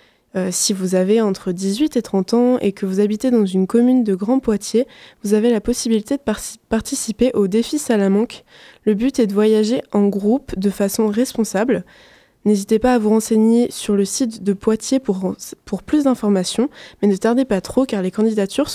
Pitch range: 205-240 Hz